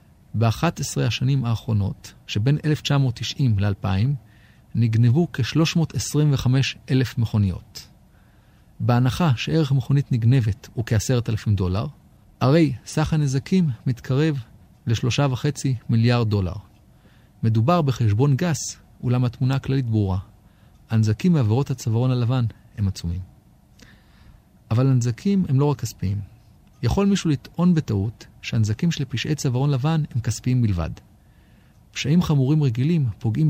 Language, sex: Hebrew, male